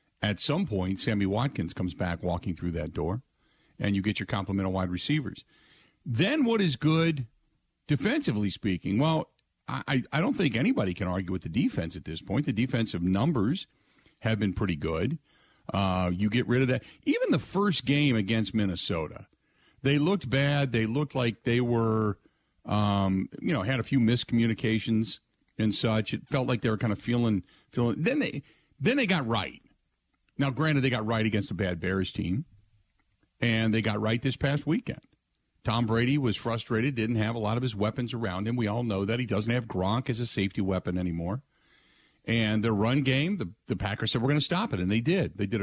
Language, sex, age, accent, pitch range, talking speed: English, male, 50-69, American, 100-125 Hz, 195 wpm